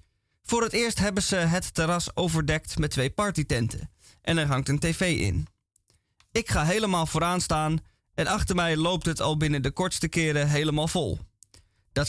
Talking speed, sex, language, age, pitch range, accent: 175 wpm, male, Dutch, 20-39, 110-180 Hz, Dutch